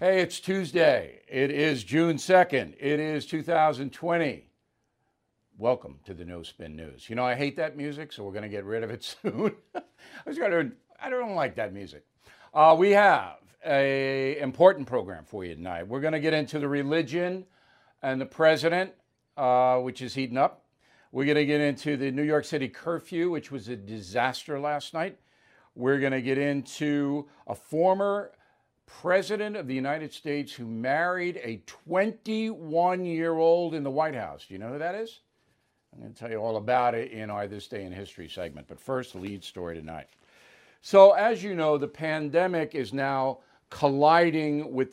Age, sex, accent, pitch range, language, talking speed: 60-79, male, American, 125-165 Hz, English, 170 wpm